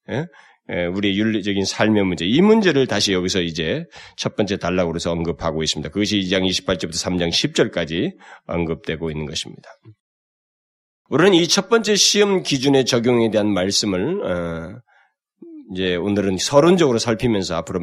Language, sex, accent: Korean, male, native